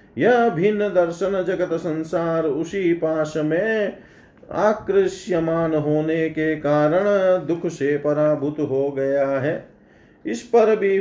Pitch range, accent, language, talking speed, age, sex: 150-190 Hz, native, Hindi, 115 wpm, 40-59, male